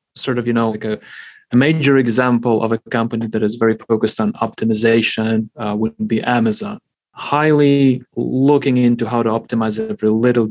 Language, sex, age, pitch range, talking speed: English, male, 30-49, 110-130 Hz, 170 wpm